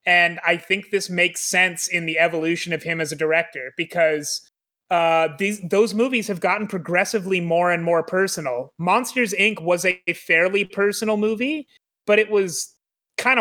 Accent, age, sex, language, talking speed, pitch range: American, 30-49, male, English, 170 wpm, 165-195 Hz